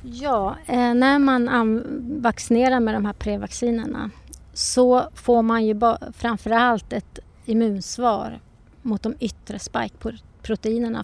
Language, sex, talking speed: Swedish, female, 105 wpm